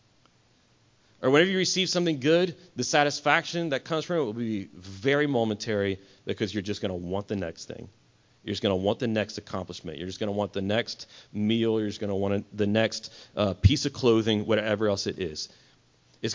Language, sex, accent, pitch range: English, male, American, 105-145 Hz